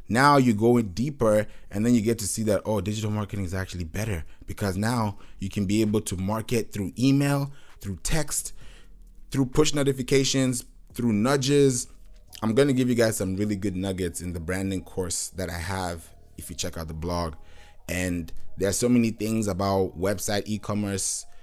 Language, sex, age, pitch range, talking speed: English, male, 20-39, 95-125 Hz, 185 wpm